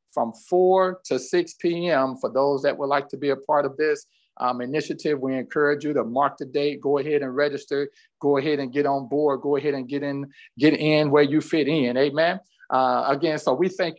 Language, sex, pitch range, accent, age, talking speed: English, male, 135-160 Hz, American, 50-69, 225 wpm